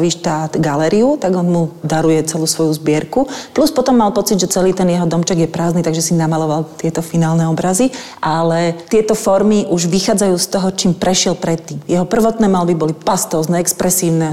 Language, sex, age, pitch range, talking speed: Slovak, female, 40-59, 165-195 Hz, 175 wpm